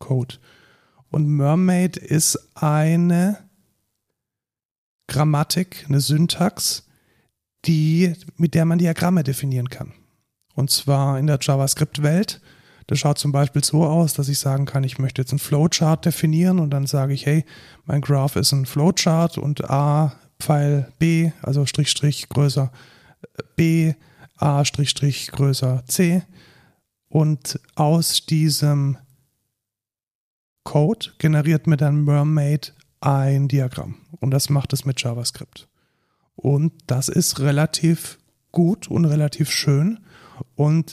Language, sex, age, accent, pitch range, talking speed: German, male, 40-59, German, 140-155 Hz, 125 wpm